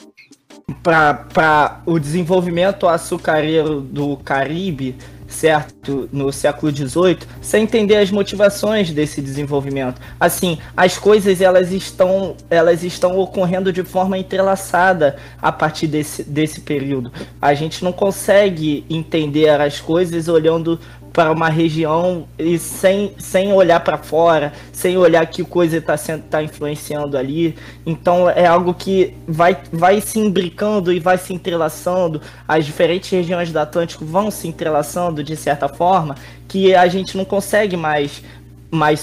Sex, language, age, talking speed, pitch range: male, Portuguese, 20-39, 135 wpm, 145-180 Hz